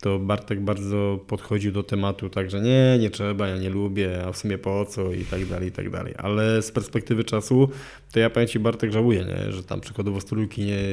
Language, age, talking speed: Polish, 20-39, 215 wpm